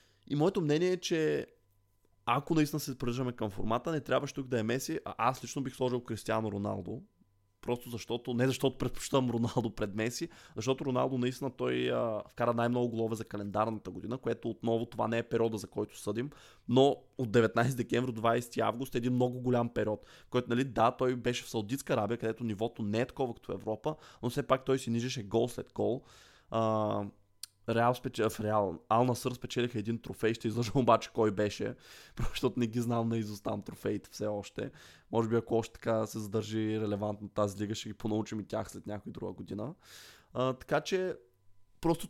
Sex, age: male, 20-39